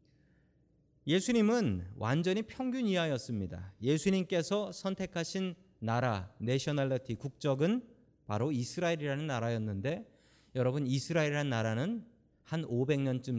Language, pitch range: Korean, 125-200 Hz